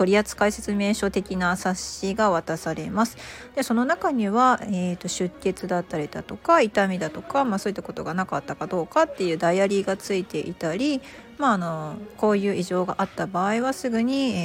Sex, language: female, Japanese